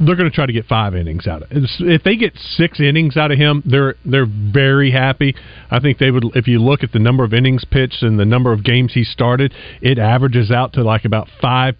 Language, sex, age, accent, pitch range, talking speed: English, male, 40-59, American, 115-150 Hz, 255 wpm